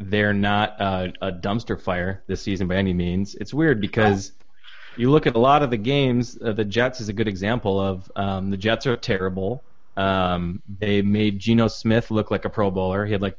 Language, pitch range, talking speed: English, 95-115 Hz, 215 wpm